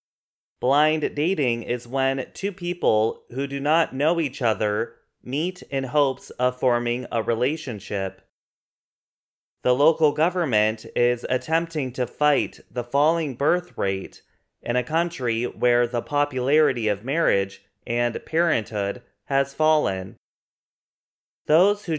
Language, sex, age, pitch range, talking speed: English, male, 30-49, 115-150 Hz, 120 wpm